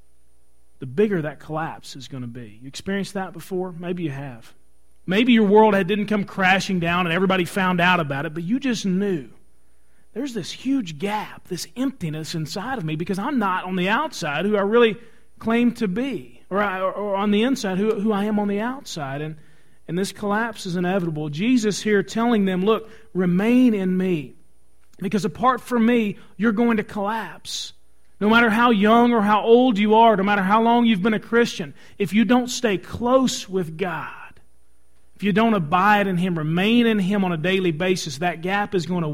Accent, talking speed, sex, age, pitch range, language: American, 200 wpm, male, 40-59, 160-215 Hz, English